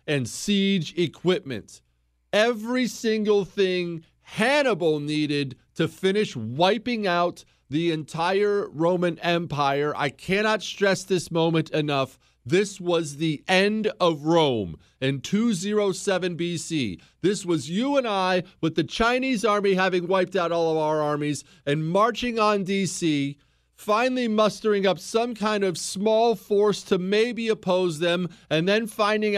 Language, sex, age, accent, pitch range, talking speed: English, male, 40-59, American, 140-195 Hz, 135 wpm